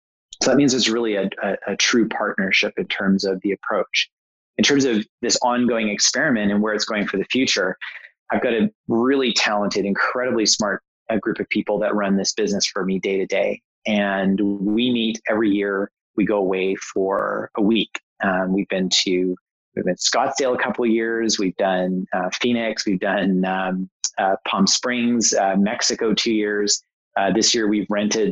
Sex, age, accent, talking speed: male, 30-49, American, 190 wpm